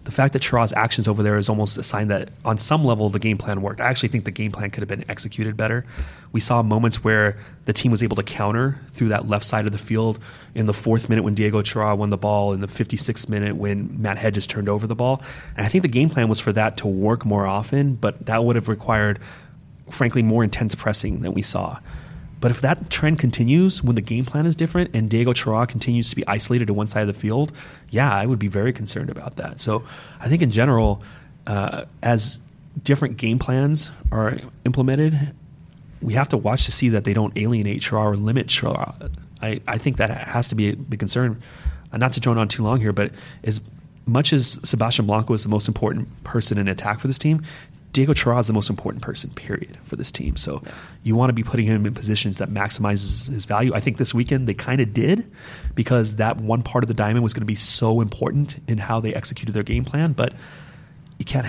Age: 30-49